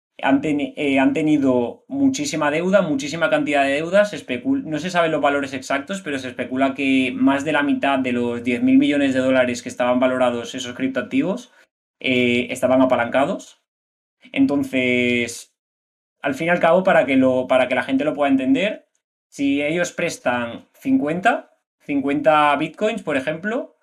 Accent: Spanish